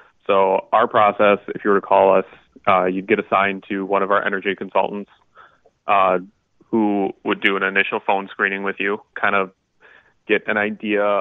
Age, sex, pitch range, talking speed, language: 30-49, male, 100-115 Hz, 180 wpm, English